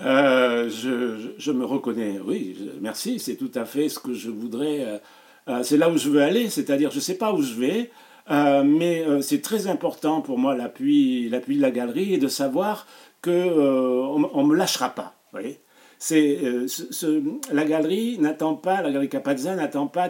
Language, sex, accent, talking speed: French, male, French, 200 wpm